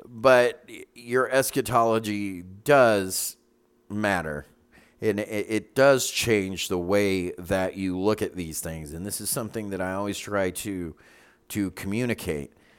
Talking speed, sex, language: 130 wpm, male, English